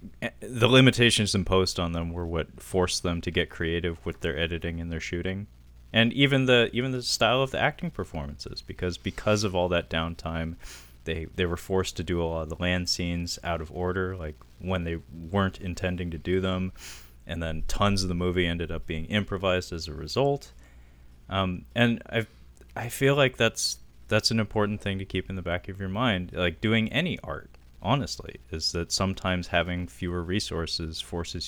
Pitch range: 80-100 Hz